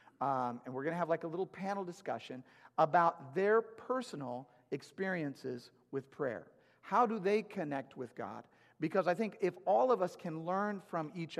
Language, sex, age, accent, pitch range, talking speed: English, male, 40-59, American, 150-190 Hz, 180 wpm